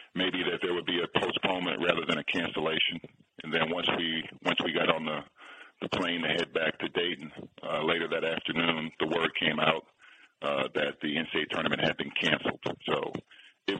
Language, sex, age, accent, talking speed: English, male, 40-59, American, 195 wpm